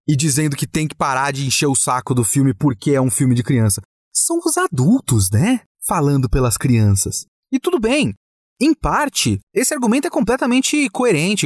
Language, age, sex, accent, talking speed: Portuguese, 30-49, male, Brazilian, 185 wpm